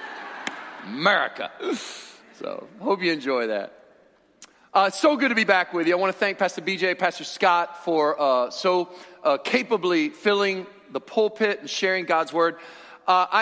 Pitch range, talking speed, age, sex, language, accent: 185-250 Hz, 160 wpm, 40-59, male, English, American